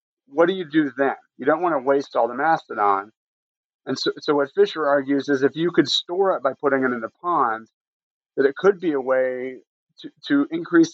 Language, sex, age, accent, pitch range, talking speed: English, male, 30-49, American, 135-160 Hz, 220 wpm